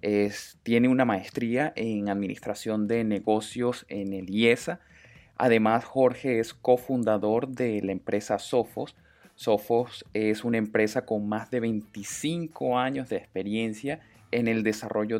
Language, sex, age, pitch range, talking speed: Spanish, male, 20-39, 105-125 Hz, 125 wpm